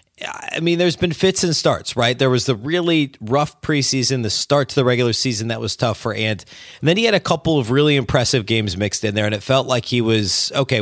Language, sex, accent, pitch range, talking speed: English, male, American, 115-140 Hz, 250 wpm